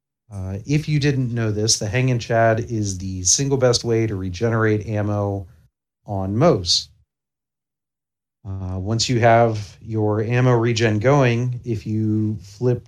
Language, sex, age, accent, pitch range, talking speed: English, male, 40-59, American, 100-120 Hz, 145 wpm